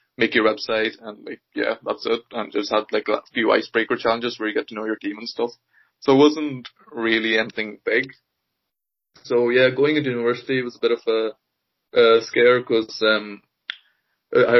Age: 20-39